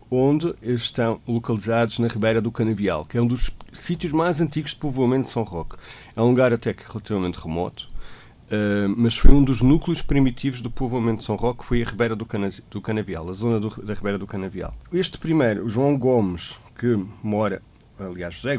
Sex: male